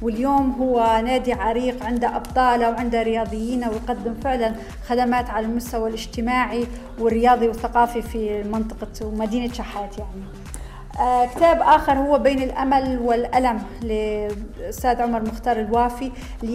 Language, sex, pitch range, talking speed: Arabic, female, 225-260 Hz, 115 wpm